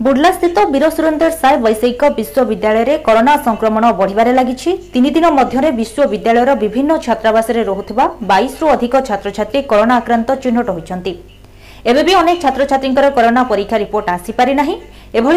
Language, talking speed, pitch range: Hindi, 135 wpm, 220-280 Hz